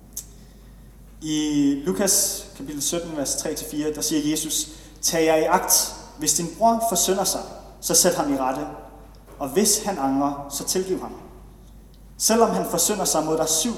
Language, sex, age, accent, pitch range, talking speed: Danish, male, 30-49, native, 135-175 Hz, 160 wpm